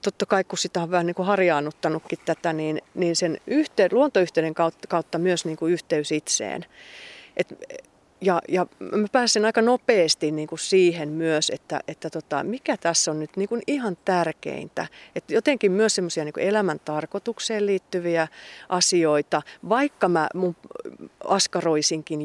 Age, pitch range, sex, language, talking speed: 30-49, 160-220 Hz, female, Finnish, 145 wpm